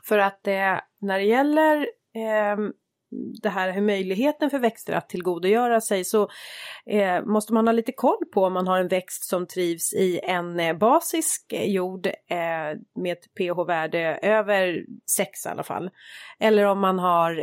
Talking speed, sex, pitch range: 170 wpm, female, 170-220 Hz